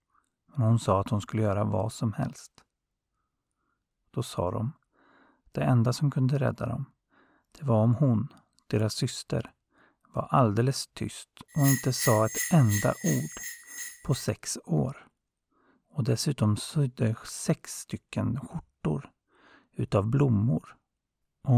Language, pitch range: Swedish, 110-130 Hz